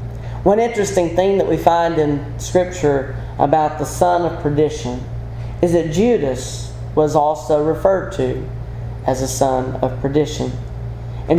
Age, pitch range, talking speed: 40-59, 120-155 Hz, 135 wpm